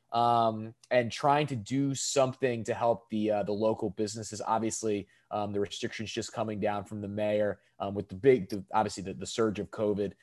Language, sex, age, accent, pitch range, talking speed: English, male, 20-39, American, 105-135 Hz, 200 wpm